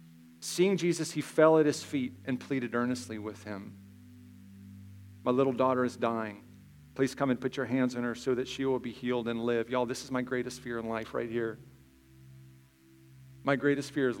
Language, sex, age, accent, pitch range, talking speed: English, male, 40-59, American, 110-135 Hz, 200 wpm